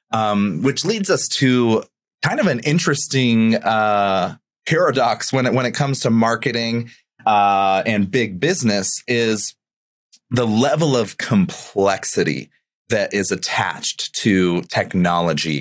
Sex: male